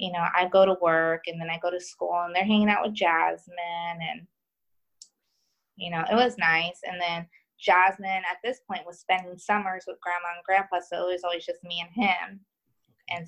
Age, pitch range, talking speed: 20-39, 175-240 Hz, 210 wpm